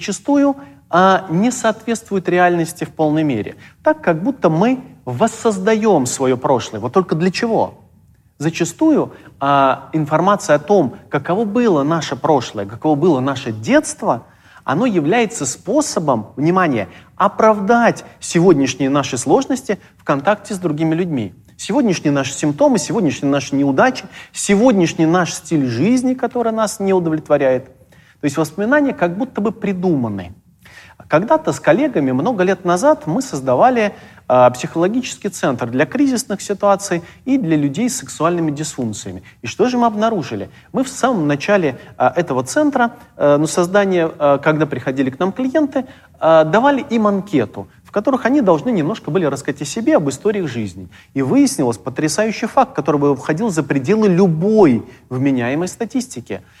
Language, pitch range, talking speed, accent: Russian, 140-220 Hz, 135 wpm, native